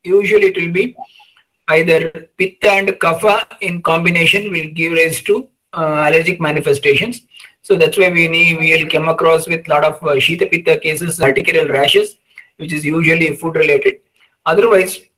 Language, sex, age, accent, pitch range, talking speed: English, male, 50-69, Indian, 155-195 Hz, 160 wpm